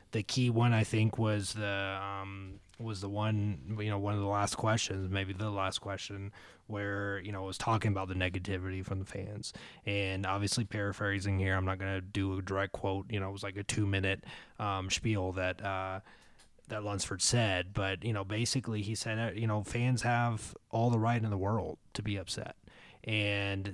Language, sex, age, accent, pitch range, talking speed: English, male, 20-39, American, 95-110 Hz, 200 wpm